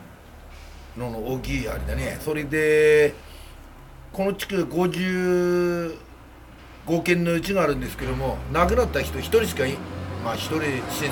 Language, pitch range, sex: Japanese, 110-165 Hz, male